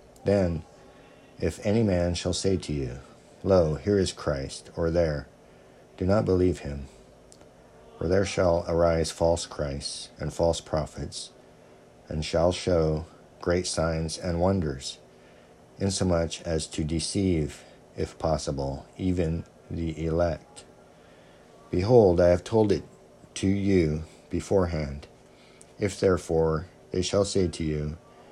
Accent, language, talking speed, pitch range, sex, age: American, English, 125 wpm, 75-90 Hz, male, 50-69